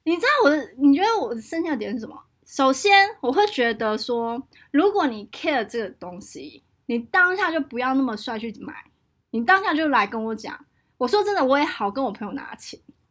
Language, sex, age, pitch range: Chinese, female, 20-39, 230-355 Hz